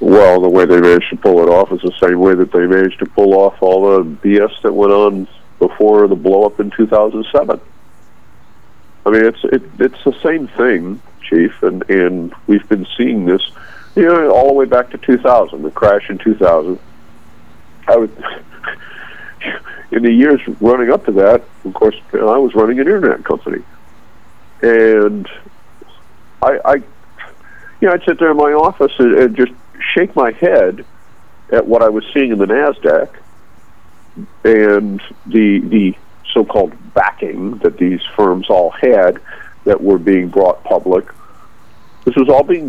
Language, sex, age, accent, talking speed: English, male, 50-69, American, 170 wpm